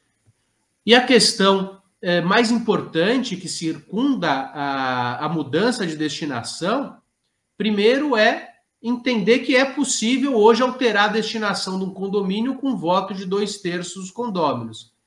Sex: male